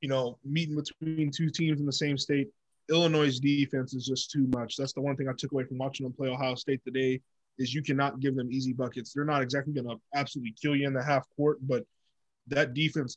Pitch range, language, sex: 130-155 Hz, English, male